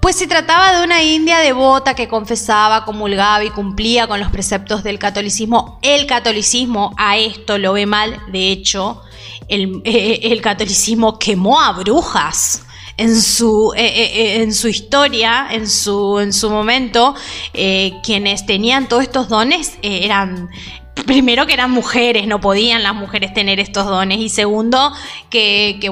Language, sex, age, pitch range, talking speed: Spanish, female, 20-39, 205-250 Hz, 155 wpm